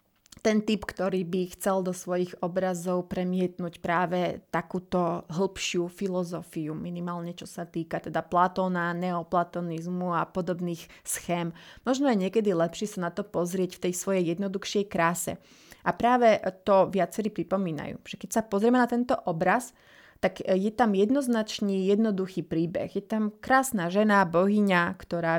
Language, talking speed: Slovak, 140 wpm